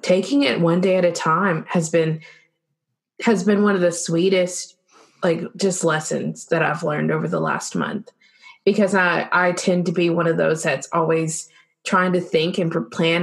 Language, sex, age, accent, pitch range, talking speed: English, female, 20-39, American, 170-215 Hz, 190 wpm